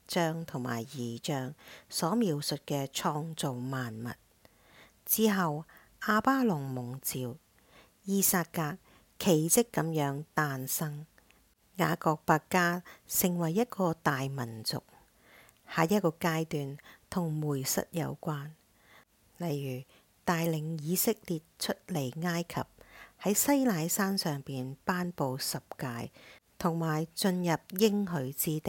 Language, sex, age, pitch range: English, female, 50-69, 145-185 Hz